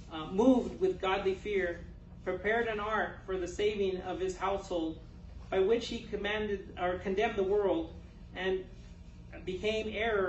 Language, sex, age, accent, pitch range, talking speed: English, male, 40-59, American, 195-235 Hz, 140 wpm